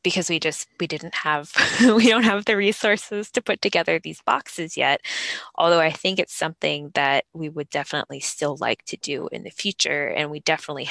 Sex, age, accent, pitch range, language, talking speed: female, 20-39, American, 150-185 Hz, English, 200 wpm